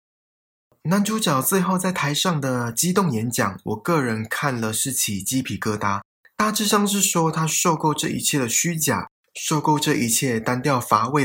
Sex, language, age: male, Chinese, 20-39